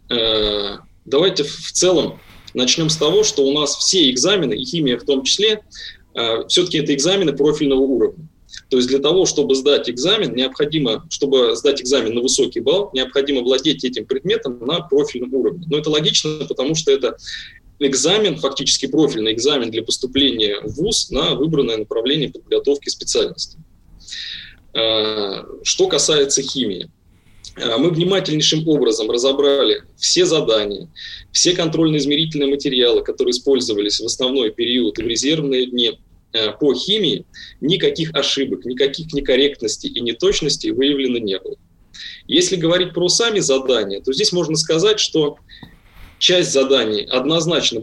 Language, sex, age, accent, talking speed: Russian, male, 20-39, native, 130 wpm